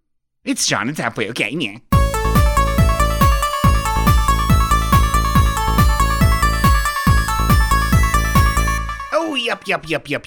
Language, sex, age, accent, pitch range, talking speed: English, male, 30-49, American, 110-165 Hz, 65 wpm